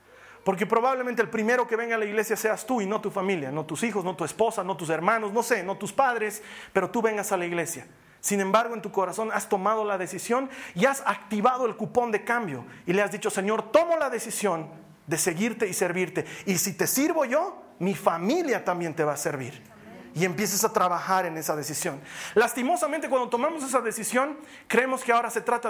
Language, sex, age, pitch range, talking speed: Spanish, male, 40-59, 175-245 Hz, 215 wpm